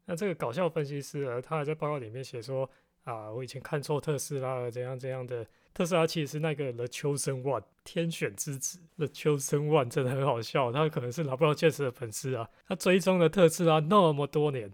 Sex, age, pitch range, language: male, 20-39, 130-160 Hz, Chinese